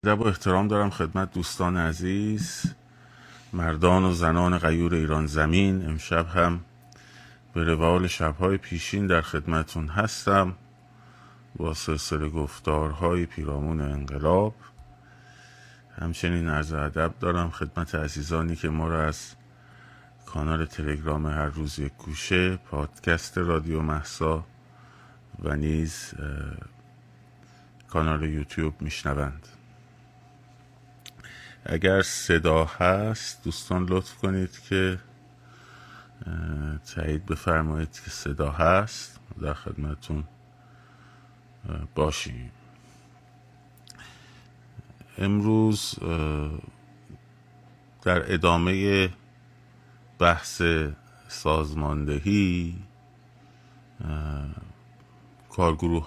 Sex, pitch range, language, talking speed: male, 80-120 Hz, Persian, 75 wpm